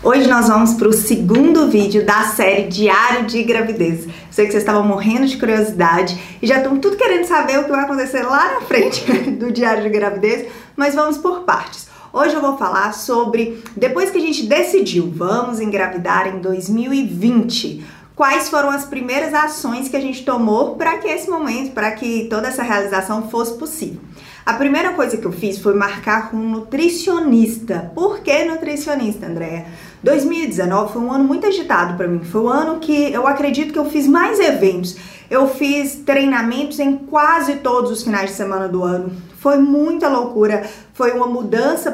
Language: Portuguese